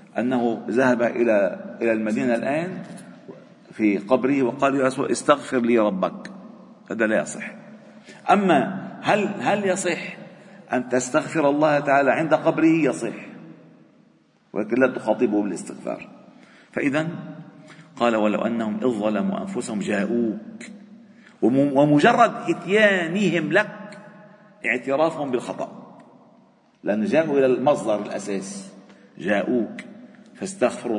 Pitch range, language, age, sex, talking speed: 125-200 Hz, Arabic, 50-69, male, 95 wpm